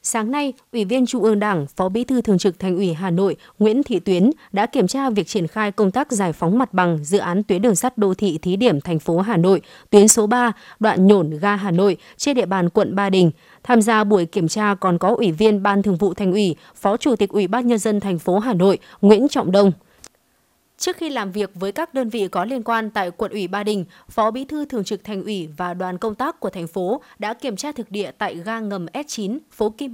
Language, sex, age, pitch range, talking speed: Vietnamese, female, 20-39, 190-240 Hz, 255 wpm